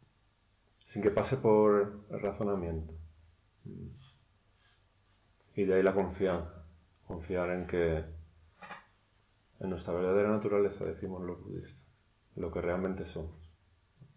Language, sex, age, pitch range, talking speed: Spanish, male, 30-49, 85-100 Hz, 105 wpm